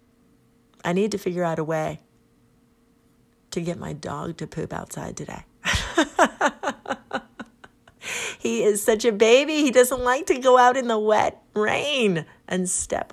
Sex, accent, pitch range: female, American, 155-210 Hz